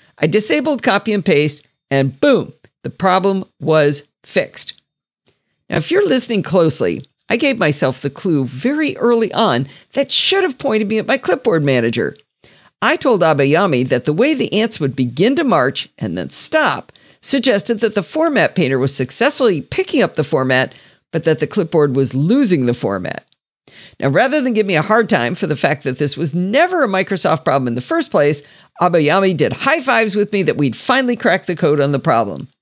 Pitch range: 145-235 Hz